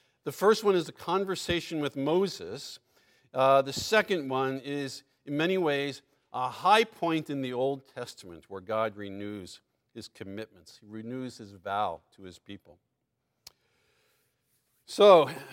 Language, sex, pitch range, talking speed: English, male, 120-170 Hz, 140 wpm